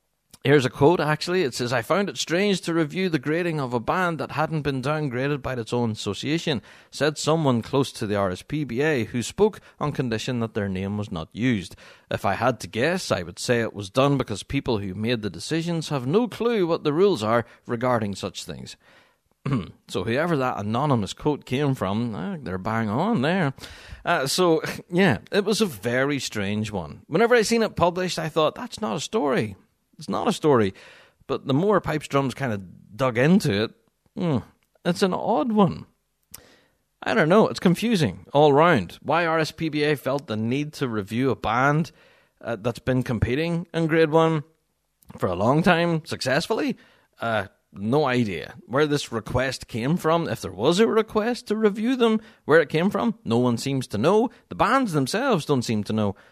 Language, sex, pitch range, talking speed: English, male, 115-170 Hz, 190 wpm